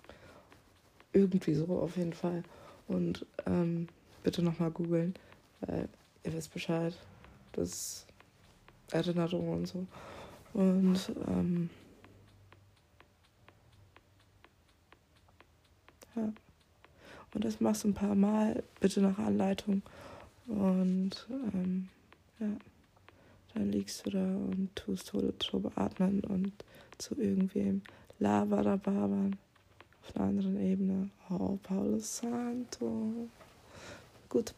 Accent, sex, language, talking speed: German, female, German, 100 wpm